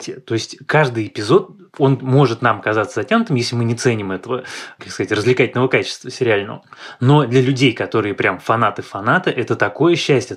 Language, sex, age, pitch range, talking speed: Russian, male, 20-39, 110-135 Hz, 160 wpm